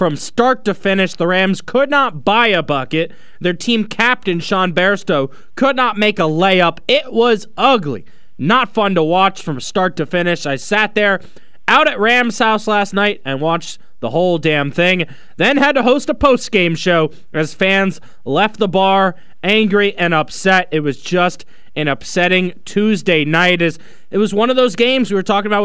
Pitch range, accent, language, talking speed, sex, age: 175-220 Hz, American, English, 185 wpm, male, 20-39